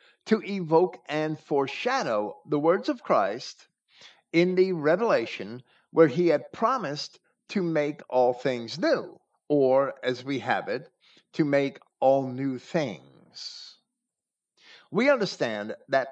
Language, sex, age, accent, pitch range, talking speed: English, male, 50-69, American, 120-190 Hz, 125 wpm